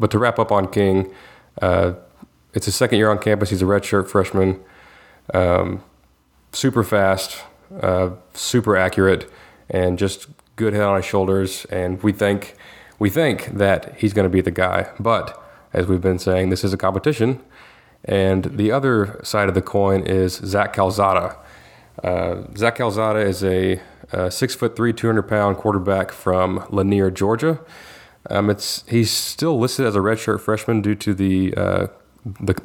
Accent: American